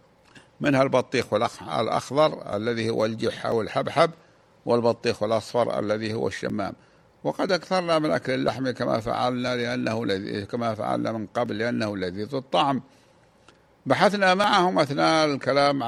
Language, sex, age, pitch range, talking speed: Arabic, male, 60-79, 120-150 Hz, 120 wpm